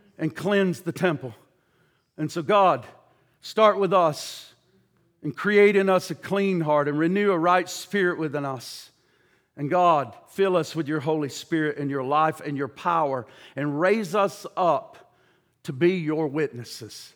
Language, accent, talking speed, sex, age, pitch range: English, American, 160 wpm, male, 50-69, 160-200 Hz